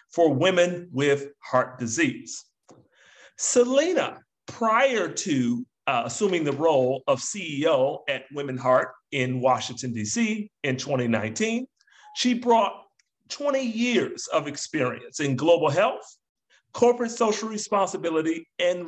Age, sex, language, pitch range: 40-59, male, English, 145-220 Hz